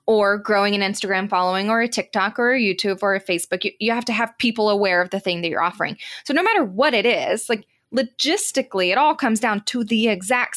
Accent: American